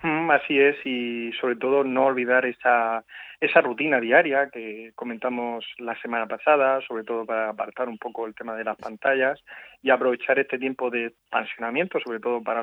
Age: 30-49